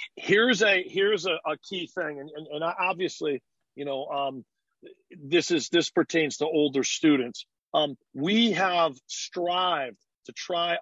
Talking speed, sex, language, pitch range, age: 150 wpm, male, English, 145-195 Hz, 40-59